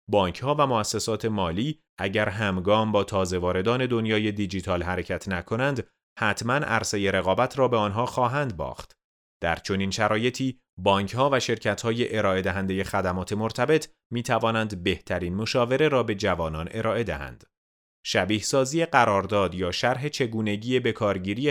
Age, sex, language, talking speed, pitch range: 30-49, male, Persian, 130 wpm, 95-125 Hz